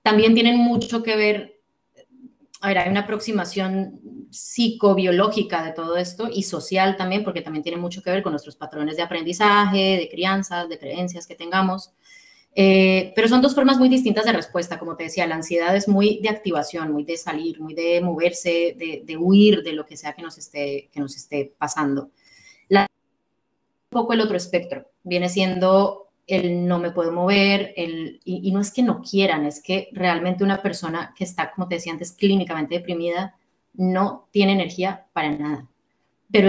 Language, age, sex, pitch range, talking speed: Spanish, 20-39, female, 170-205 Hz, 185 wpm